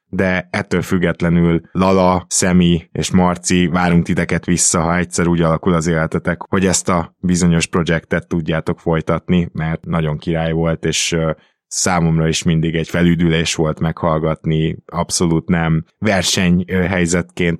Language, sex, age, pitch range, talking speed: Hungarian, male, 20-39, 85-95 Hz, 130 wpm